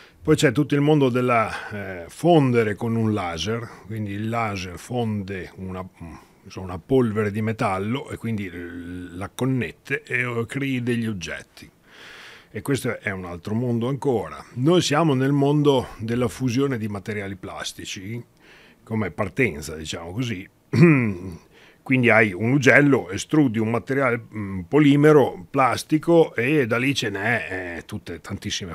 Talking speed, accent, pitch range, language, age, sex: 140 wpm, native, 95-130 Hz, Italian, 40-59, male